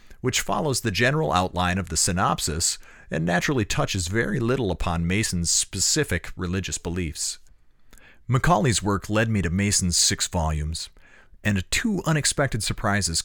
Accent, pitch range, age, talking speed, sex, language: American, 90-125 Hz, 40-59, 135 wpm, male, English